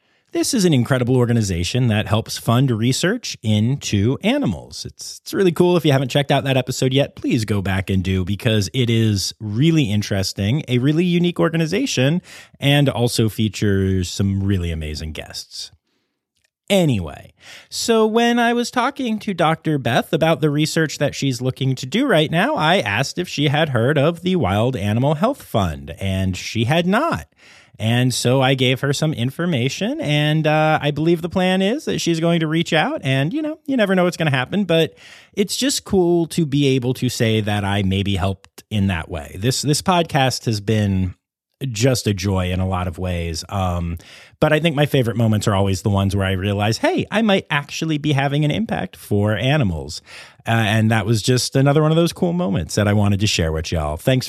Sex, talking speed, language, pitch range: male, 200 wpm, English, 100-155 Hz